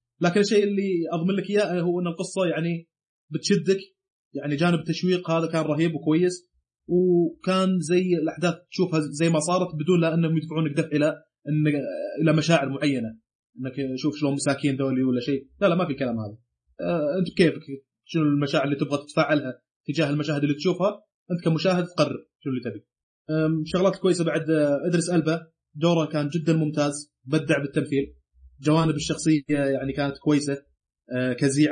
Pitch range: 135-165 Hz